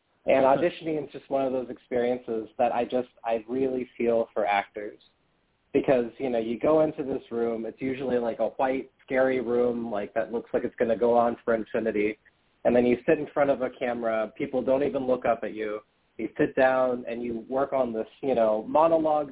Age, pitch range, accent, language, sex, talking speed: 30-49, 115-145 Hz, American, English, male, 215 wpm